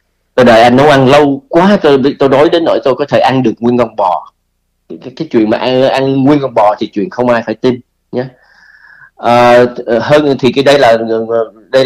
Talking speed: 225 wpm